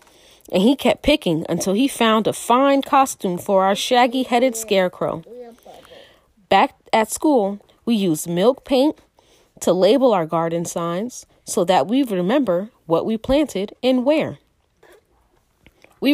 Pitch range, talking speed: 190-260 Hz, 135 wpm